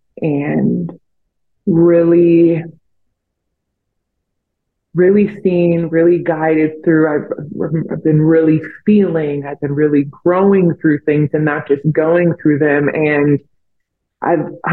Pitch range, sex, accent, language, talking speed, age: 150-175 Hz, female, American, English, 105 wpm, 20-39